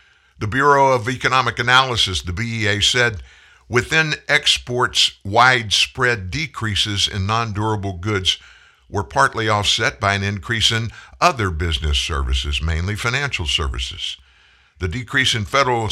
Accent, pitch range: American, 80-120 Hz